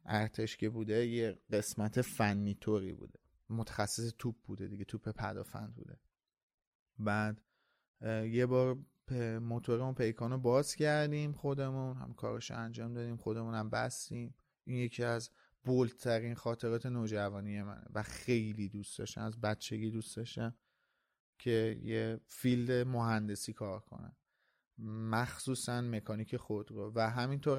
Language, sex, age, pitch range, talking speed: Persian, male, 30-49, 110-130 Hz, 120 wpm